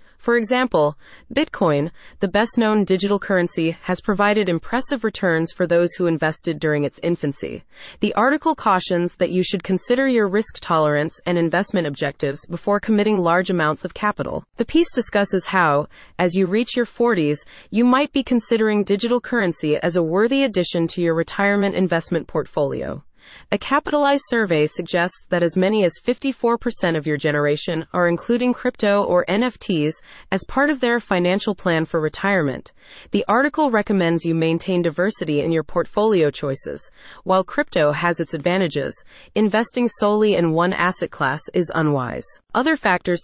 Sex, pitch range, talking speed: female, 165-225 Hz, 155 wpm